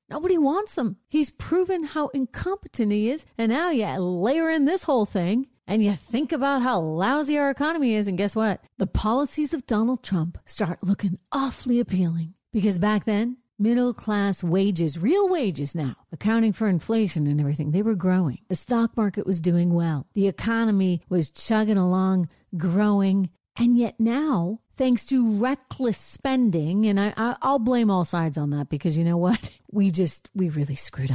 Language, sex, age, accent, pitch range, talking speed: English, female, 40-59, American, 165-225 Hz, 180 wpm